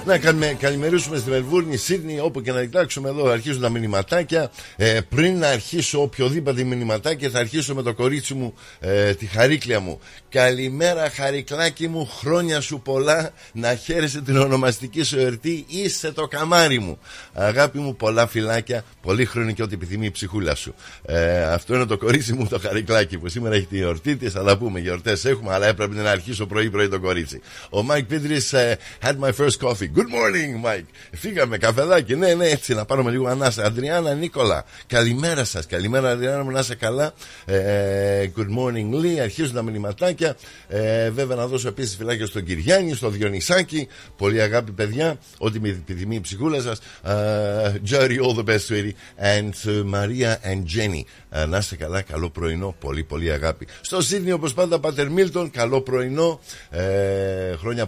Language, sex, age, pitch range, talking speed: Greek, male, 50-69, 105-145 Hz, 170 wpm